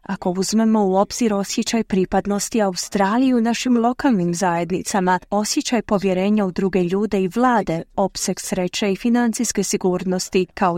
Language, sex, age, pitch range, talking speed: Croatian, female, 30-49, 185-240 Hz, 135 wpm